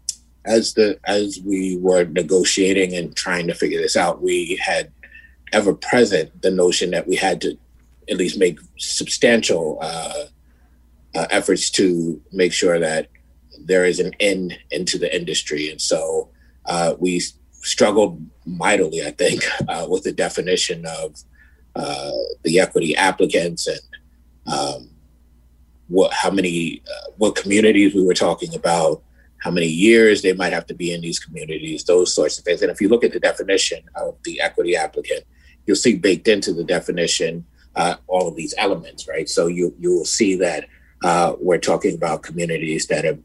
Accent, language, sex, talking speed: American, English, male, 165 wpm